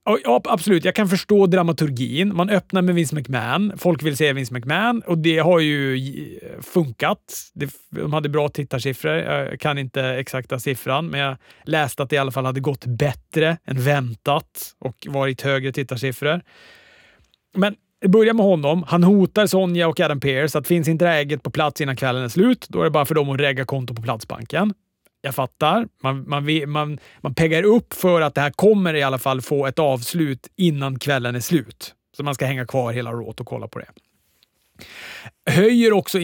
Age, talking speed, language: 30-49, 190 wpm, Swedish